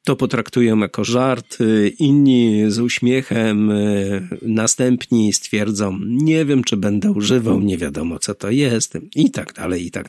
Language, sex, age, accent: Polish, male, 50-69, native